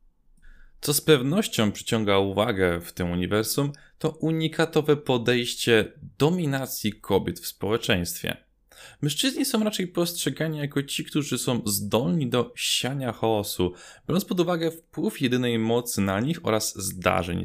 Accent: native